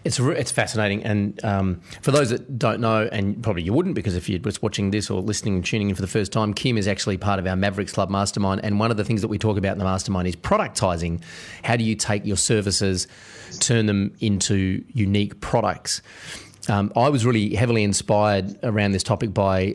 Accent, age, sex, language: Australian, 30-49, male, English